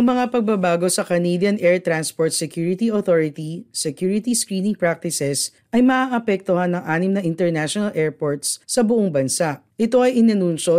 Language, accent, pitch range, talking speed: Filipino, native, 155-210 Hz, 140 wpm